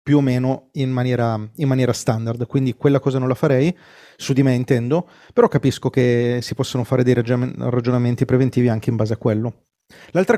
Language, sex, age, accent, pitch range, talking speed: Italian, male, 30-49, native, 130-165 Hz, 190 wpm